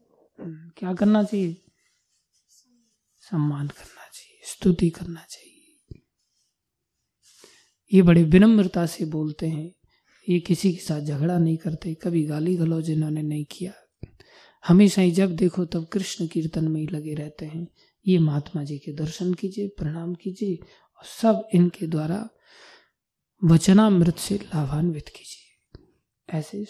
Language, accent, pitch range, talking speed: Hindi, native, 160-210 Hz, 130 wpm